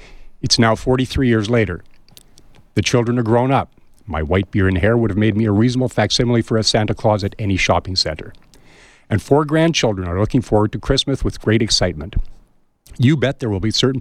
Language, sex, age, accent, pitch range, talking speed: English, male, 50-69, American, 100-125 Hz, 200 wpm